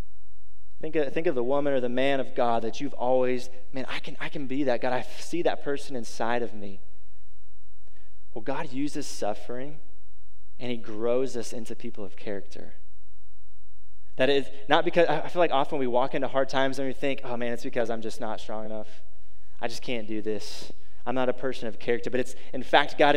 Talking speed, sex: 210 wpm, male